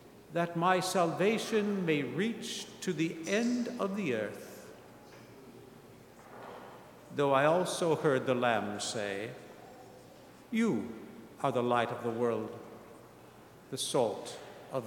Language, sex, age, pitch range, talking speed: English, male, 50-69, 150-205 Hz, 115 wpm